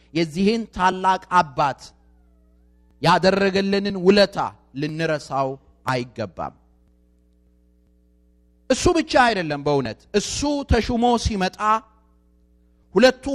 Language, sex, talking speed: Amharic, male, 65 wpm